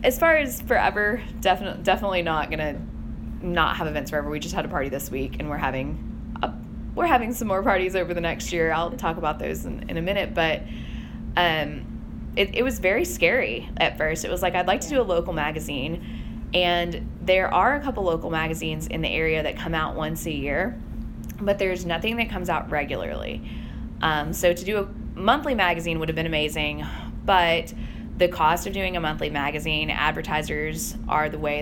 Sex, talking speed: female, 200 wpm